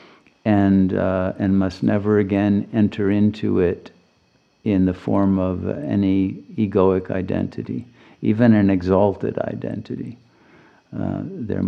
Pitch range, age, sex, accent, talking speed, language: 95-105 Hz, 50-69, male, American, 115 wpm, English